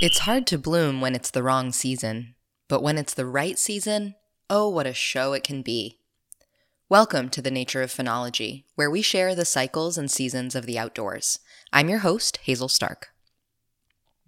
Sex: female